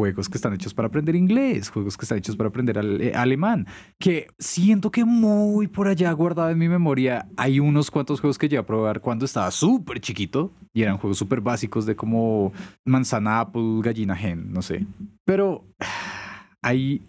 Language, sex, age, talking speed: Spanish, male, 30-49, 185 wpm